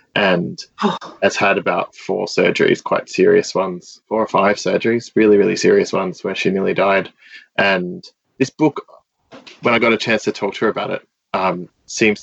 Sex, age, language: male, 20-39, English